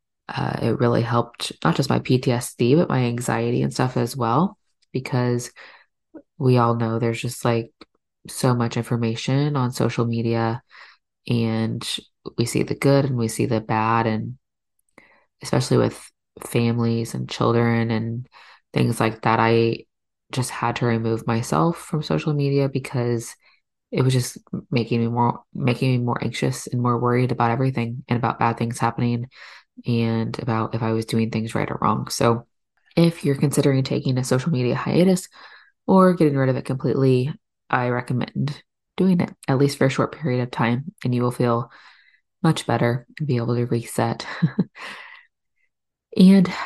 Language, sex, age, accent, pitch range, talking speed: English, female, 20-39, American, 115-140 Hz, 160 wpm